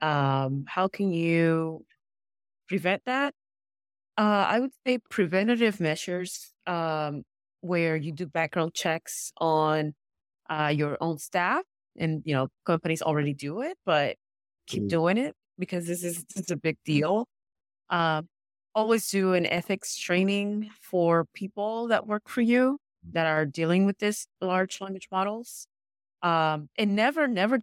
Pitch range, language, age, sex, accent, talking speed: 160-210 Hz, English, 30-49, female, American, 145 wpm